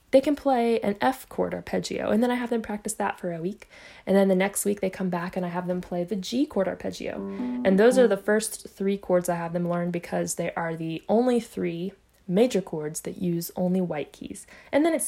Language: English